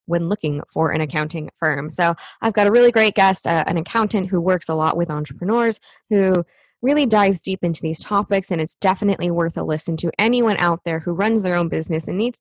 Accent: American